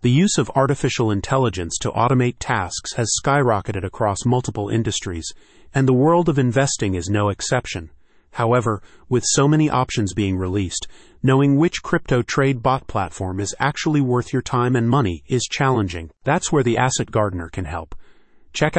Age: 30-49